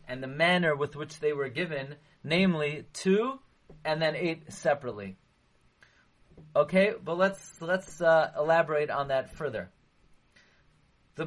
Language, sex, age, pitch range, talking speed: English, male, 30-49, 150-190 Hz, 130 wpm